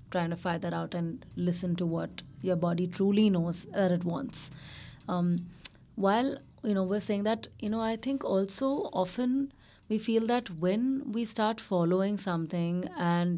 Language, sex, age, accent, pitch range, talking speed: English, female, 20-39, Indian, 180-225 Hz, 170 wpm